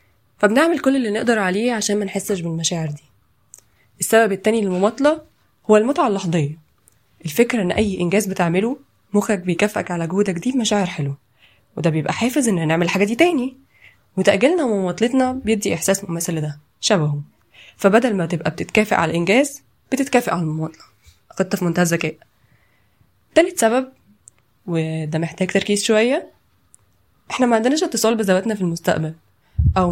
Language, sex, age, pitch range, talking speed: Arabic, female, 20-39, 165-225 Hz, 130 wpm